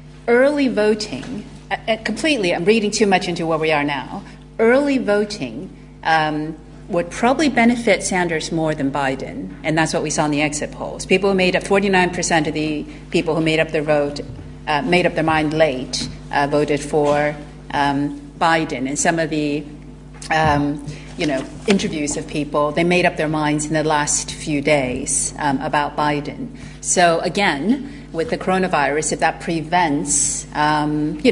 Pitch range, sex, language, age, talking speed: 145-180 Hz, female, English, 40-59, 170 wpm